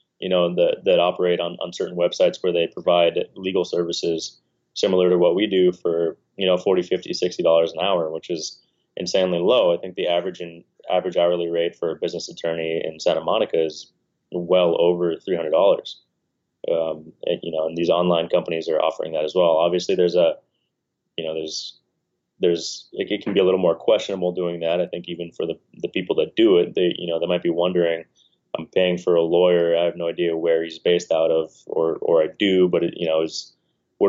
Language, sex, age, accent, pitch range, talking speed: English, male, 20-39, American, 85-90 Hz, 210 wpm